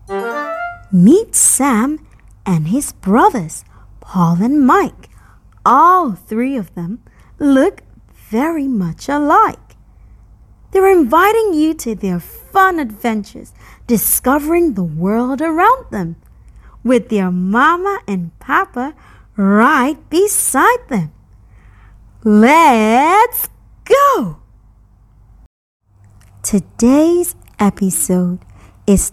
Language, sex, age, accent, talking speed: English, female, 30-49, American, 85 wpm